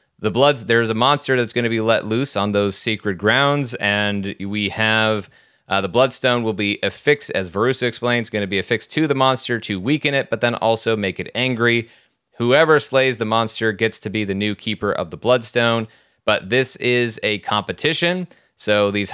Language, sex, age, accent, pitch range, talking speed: English, male, 30-49, American, 105-120 Hz, 200 wpm